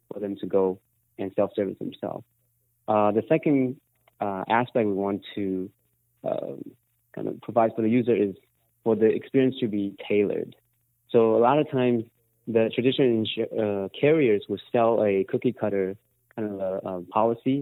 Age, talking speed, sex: 30-49, 160 wpm, male